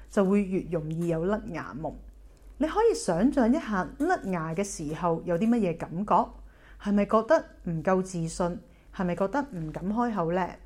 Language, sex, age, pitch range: Chinese, female, 30-49, 175-250 Hz